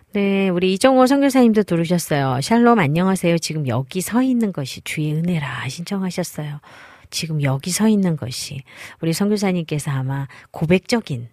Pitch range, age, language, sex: 135-195 Hz, 40-59, Korean, female